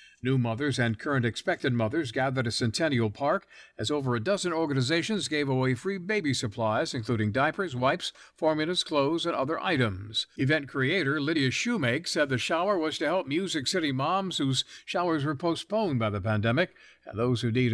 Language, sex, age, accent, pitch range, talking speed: English, male, 50-69, American, 115-170 Hz, 175 wpm